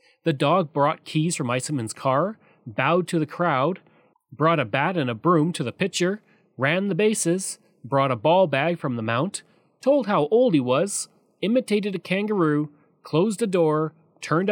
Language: English